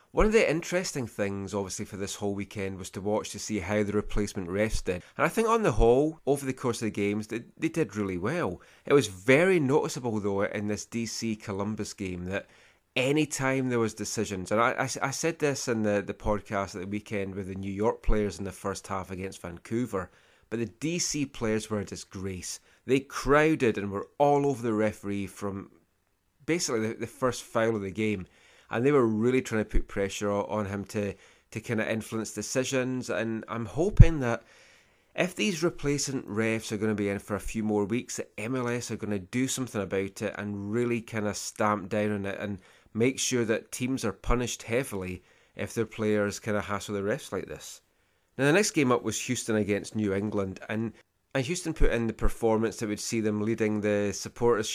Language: English